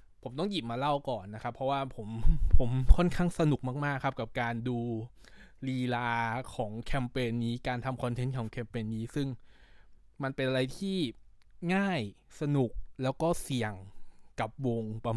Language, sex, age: Thai, male, 20-39